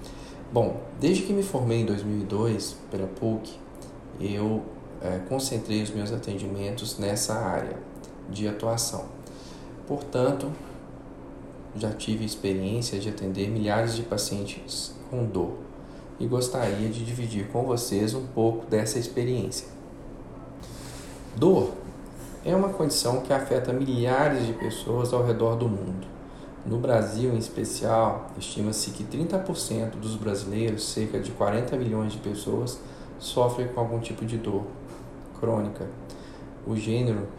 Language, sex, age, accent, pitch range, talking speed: Portuguese, male, 40-59, Brazilian, 105-125 Hz, 120 wpm